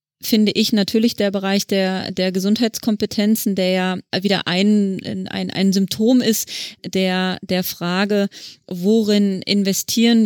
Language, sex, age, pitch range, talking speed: German, female, 30-49, 190-210 Hz, 125 wpm